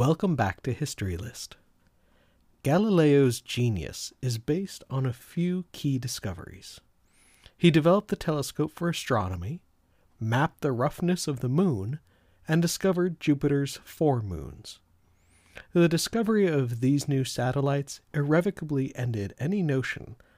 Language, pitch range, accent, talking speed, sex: English, 110-160 Hz, American, 120 wpm, male